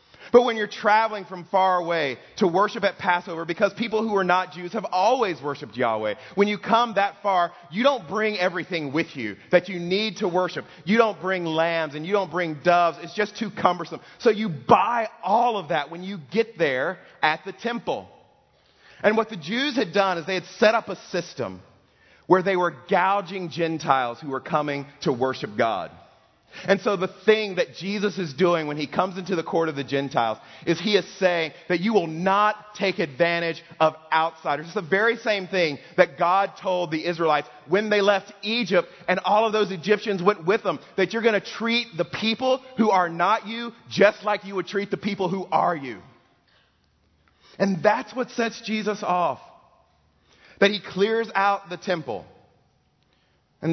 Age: 30-49